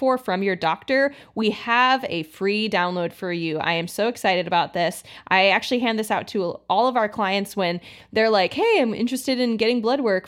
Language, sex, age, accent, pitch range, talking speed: English, female, 20-39, American, 190-240 Hz, 210 wpm